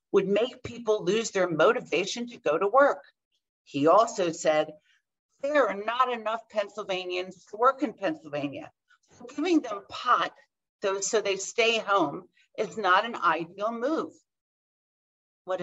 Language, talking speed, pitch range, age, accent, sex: English, 140 wpm, 175-250 Hz, 50-69, American, female